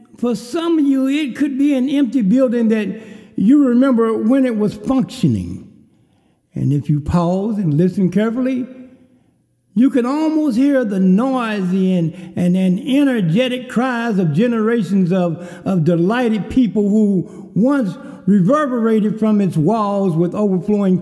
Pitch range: 155-225 Hz